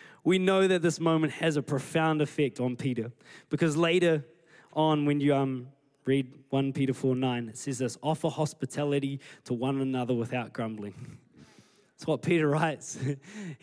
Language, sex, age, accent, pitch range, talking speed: English, male, 20-39, Australian, 135-165 Hz, 160 wpm